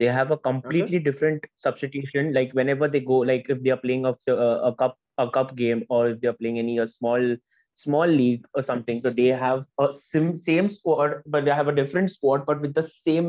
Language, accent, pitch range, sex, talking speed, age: English, Indian, 125-150 Hz, male, 230 wpm, 20-39